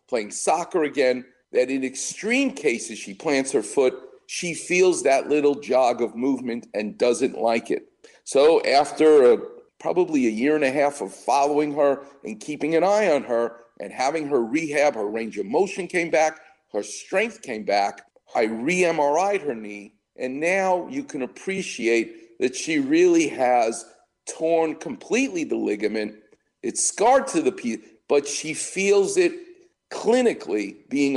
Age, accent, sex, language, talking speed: 50-69, American, male, English, 155 wpm